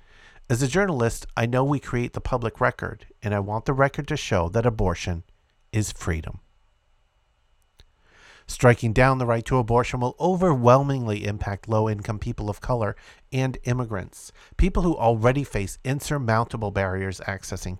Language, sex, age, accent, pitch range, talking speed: English, male, 50-69, American, 100-130 Hz, 145 wpm